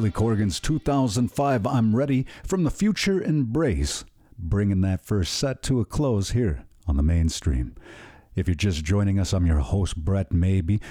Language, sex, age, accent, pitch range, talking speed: English, male, 50-69, American, 95-145 Hz, 165 wpm